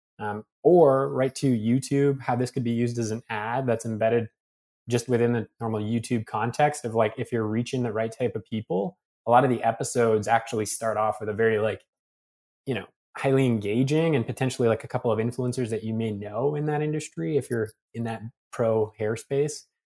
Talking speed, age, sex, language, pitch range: 205 wpm, 20-39, male, English, 110-130 Hz